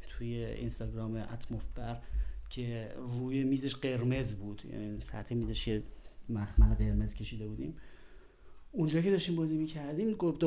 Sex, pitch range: male, 120-170 Hz